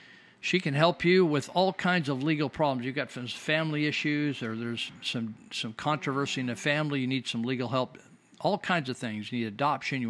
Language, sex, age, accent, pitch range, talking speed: English, male, 50-69, American, 125-155 Hz, 215 wpm